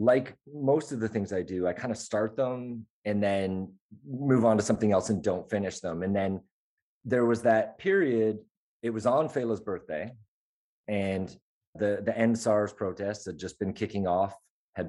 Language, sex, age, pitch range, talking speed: English, male, 30-49, 95-115 Hz, 185 wpm